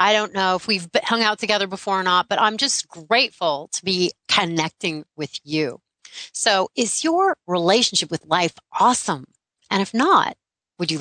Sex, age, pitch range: female, 30-49, 165-245 Hz